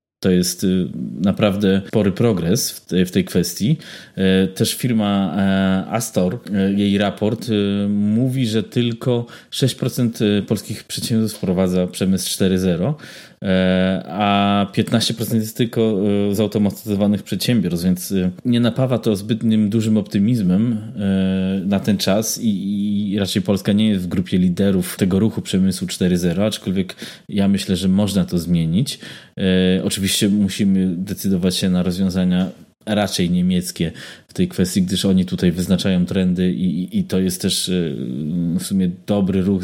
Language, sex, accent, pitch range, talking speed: Polish, male, native, 95-115 Hz, 125 wpm